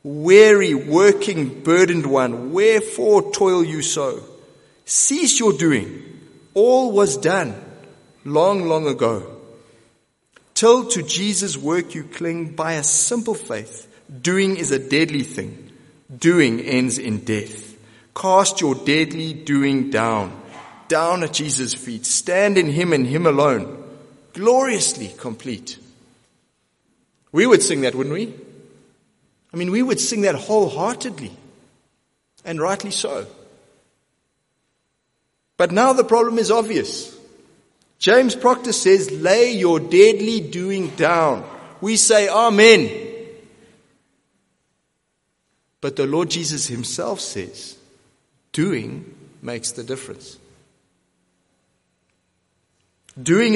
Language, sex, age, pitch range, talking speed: English, male, 30-49, 125-205 Hz, 110 wpm